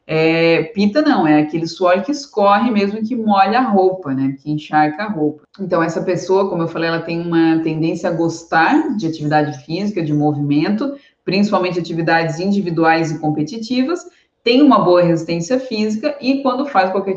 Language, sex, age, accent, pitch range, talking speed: Portuguese, female, 20-39, Brazilian, 165-225 Hz, 170 wpm